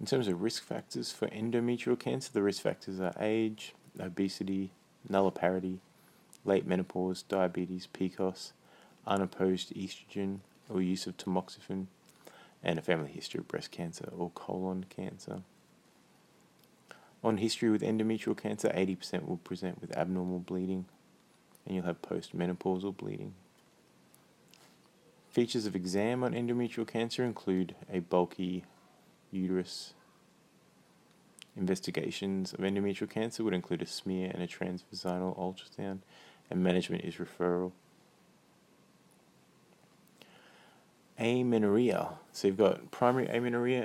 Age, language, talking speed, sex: 20-39, English, 115 wpm, male